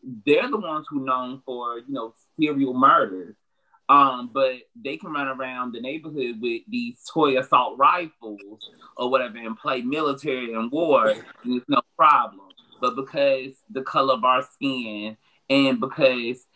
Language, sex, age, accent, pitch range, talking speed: English, male, 30-49, American, 115-140 Hz, 155 wpm